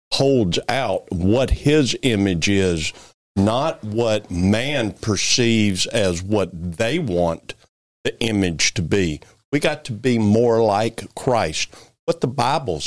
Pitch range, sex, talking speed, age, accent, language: 95-125 Hz, male, 130 wpm, 50-69, American, English